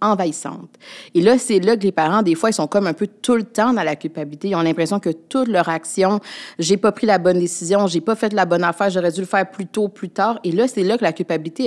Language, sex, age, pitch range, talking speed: French, female, 30-49, 165-210 Hz, 295 wpm